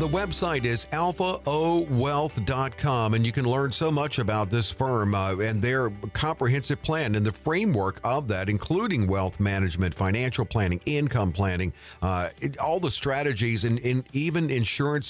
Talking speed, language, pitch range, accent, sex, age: 150 wpm, English, 105-135 Hz, American, male, 50-69